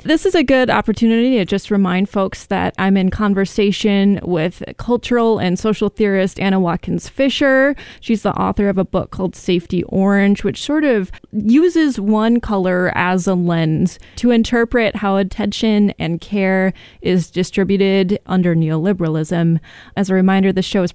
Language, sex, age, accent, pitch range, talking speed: English, female, 20-39, American, 180-210 Hz, 160 wpm